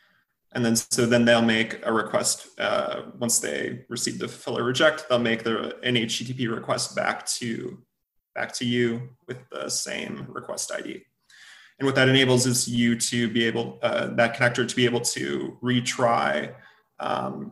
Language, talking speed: English, 170 wpm